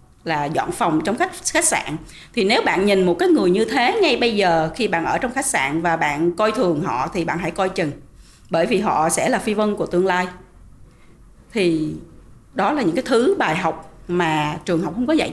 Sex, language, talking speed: female, Vietnamese, 230 wpm